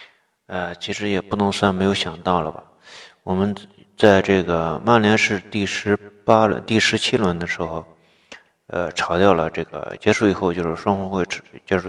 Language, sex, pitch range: Chinese, male, 90-105 Hz